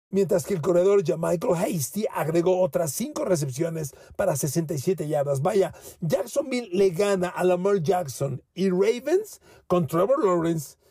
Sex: male